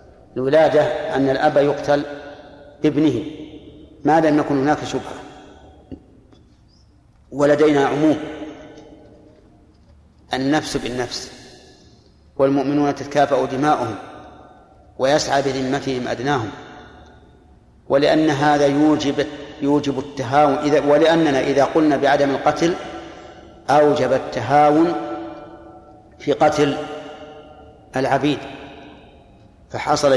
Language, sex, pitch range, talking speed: Arabic, male, 135-150 Hz, 75 wpm